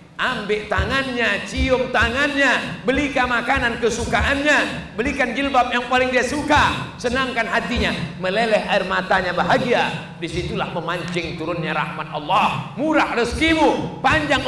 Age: 40-59